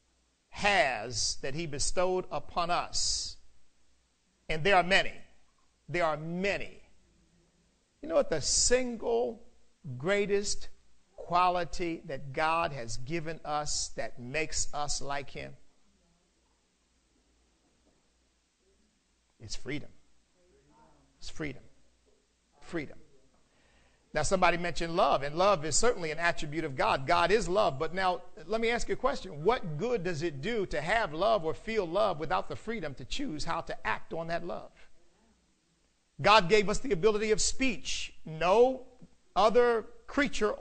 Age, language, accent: 50-69, English, American